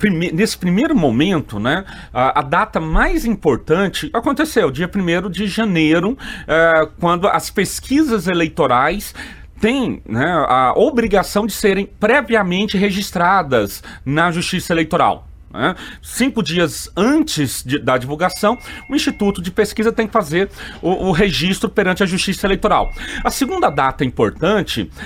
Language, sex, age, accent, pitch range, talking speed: Portuguese, male, 40-59, Brazilian, 160-220 Hz, 135 wpm